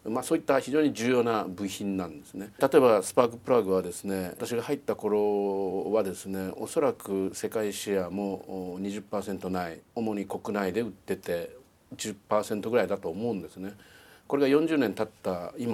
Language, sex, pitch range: Japanese, male, 95-135 Hz